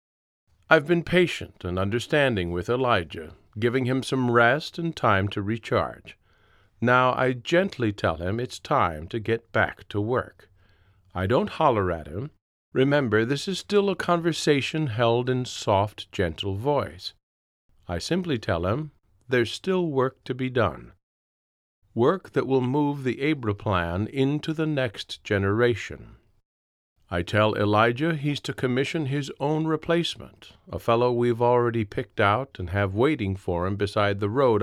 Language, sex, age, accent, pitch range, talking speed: English, male, 50-69, American, 100-135 Hz, 150 wpm